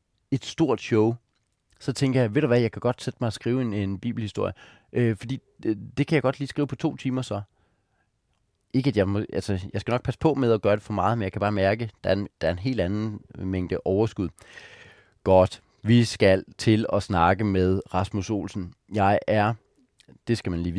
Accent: native